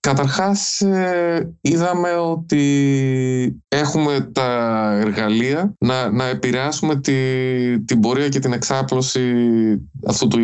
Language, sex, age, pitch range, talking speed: Greek, male, 20-39, 100-130 Hz, 90 wpm